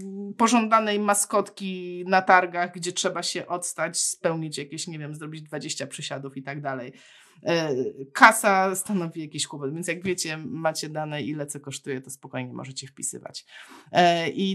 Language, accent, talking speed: Polish, native, 145 wpm